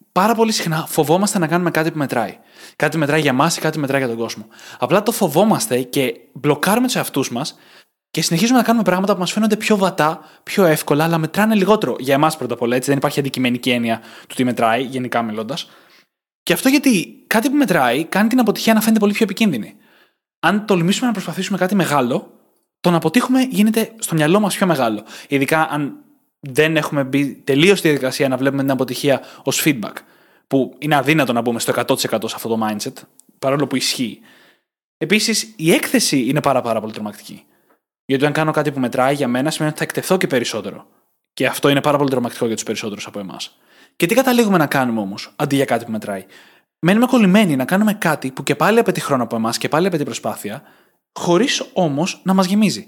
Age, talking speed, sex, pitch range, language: 20-39, 205 wpm, male, 130-200 Hz, Greek